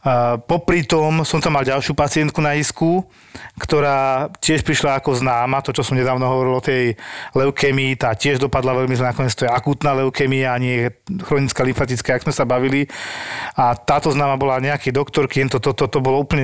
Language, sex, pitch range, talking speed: Slovak, male, 130-145 Hz, 185 wpm